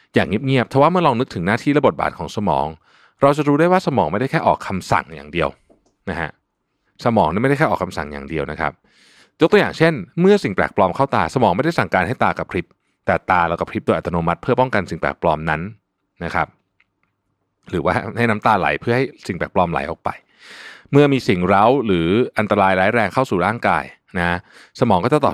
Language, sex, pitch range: Thai, male, 85-130 Hz